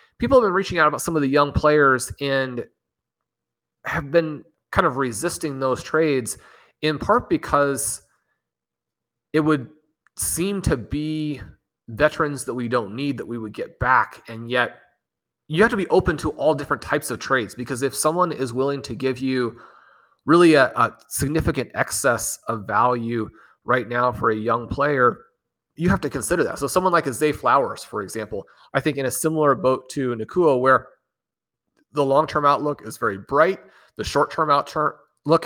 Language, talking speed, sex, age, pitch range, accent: English, 175 wpm, male, 30-49, 125-155 Hz, American